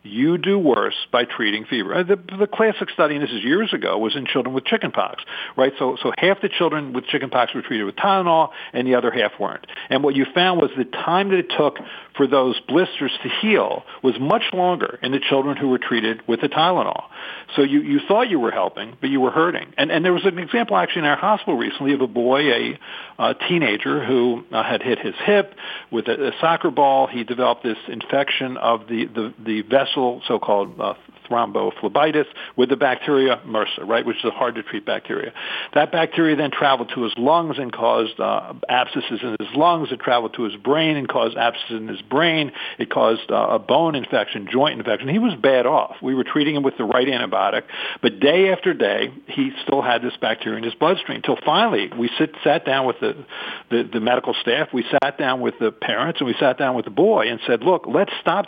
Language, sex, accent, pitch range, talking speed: English, male, American, 125-180 Hz, 220 wpm